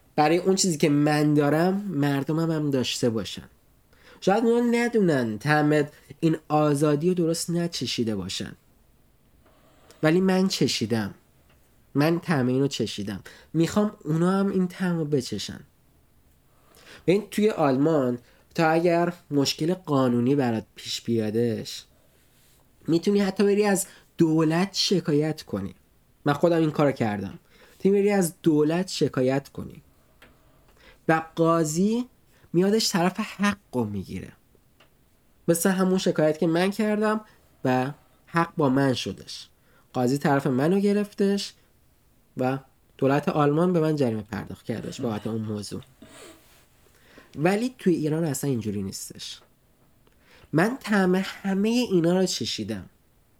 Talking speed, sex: 120 wpm, male